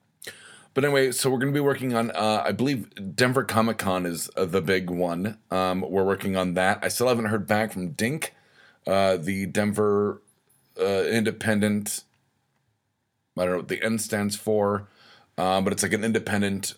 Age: 30-49